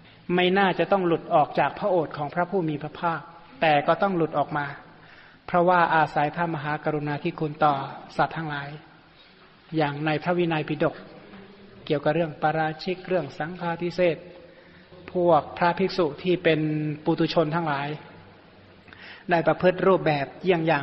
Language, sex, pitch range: Thai, male, 150-170 Hz